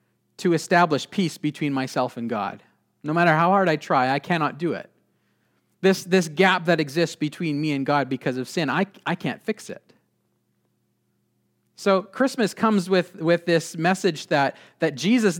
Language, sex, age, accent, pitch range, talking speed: English, male, 40-59, American, 135-180 Hz, 170 wpm